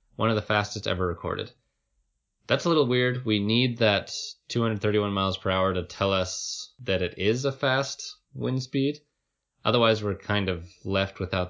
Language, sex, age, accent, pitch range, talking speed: English, male, 20-39, American, 95-120 Hz, 170 wpm